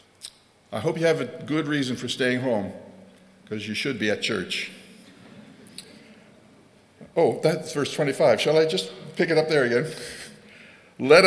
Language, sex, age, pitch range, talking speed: English, male, 60-79, 105-155 Hz, 155 wpm